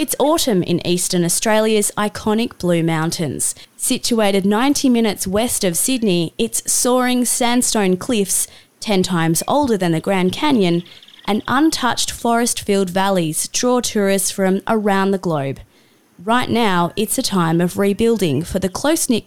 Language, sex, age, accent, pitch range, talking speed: English, female, 20-39, Australian, 175-225 Hz, 140 wpm